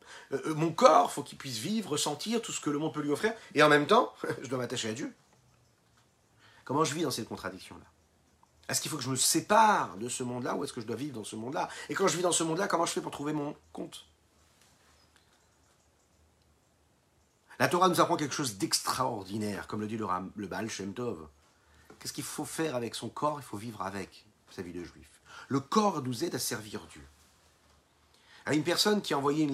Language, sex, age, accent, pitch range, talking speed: French, male, 40-59, French, 100-150 Hz, 220 wpm